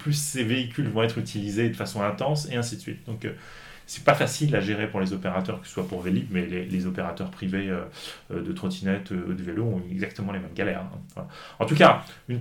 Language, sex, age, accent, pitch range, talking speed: French, male, 30-49, French, 95-120 Hz, 245 wpm